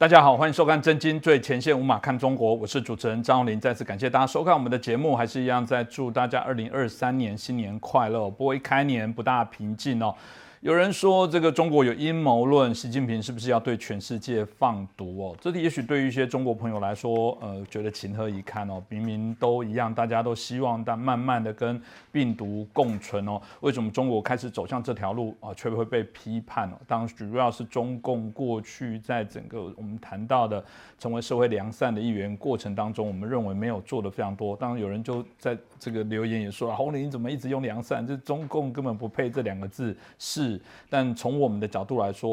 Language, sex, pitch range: Chinese, male, 110-130 Hz